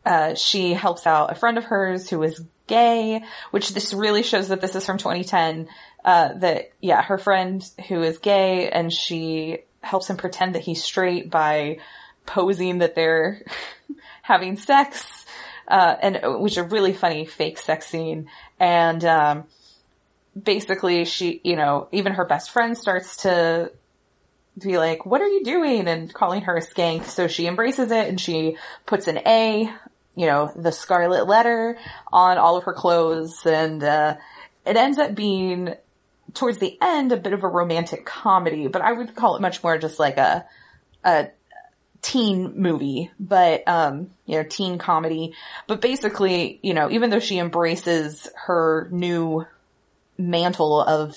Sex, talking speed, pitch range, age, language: female, 165 wpm, 160-200 Hz, 20-39, English